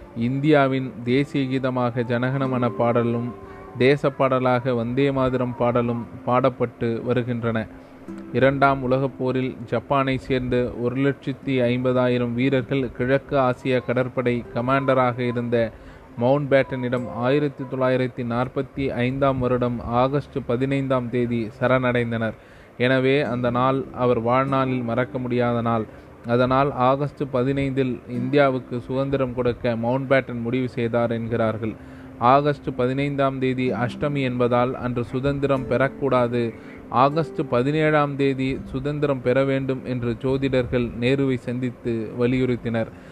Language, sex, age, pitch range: Tamil, male, 20-39, 120-135 Hz